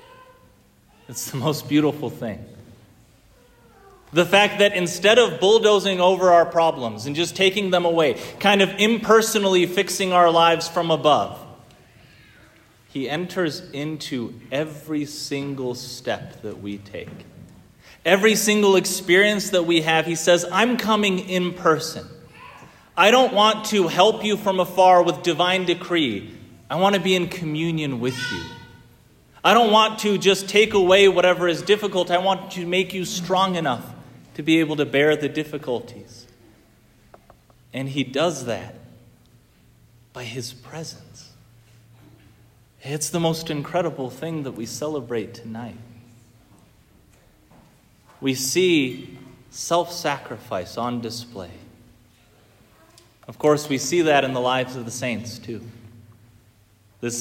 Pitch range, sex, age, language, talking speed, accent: 120-180 Hz, male, 30-49, English, 130 wpm, American